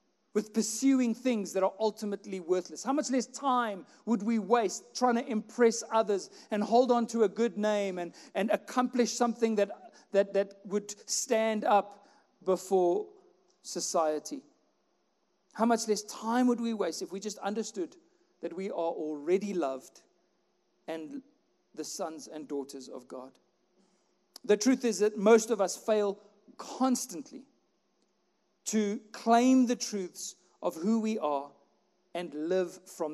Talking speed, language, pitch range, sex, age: 145 wpm, English, 185-245 Hz, male, 50-69